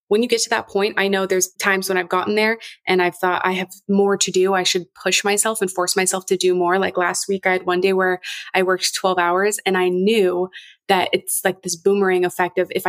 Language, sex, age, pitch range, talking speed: English, female, 20-39, 180-210 Hz, 255 wpm